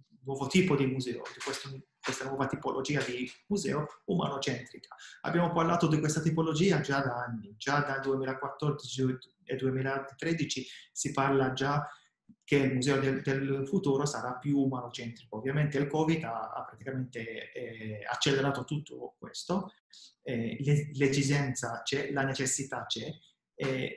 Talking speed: 135 wpm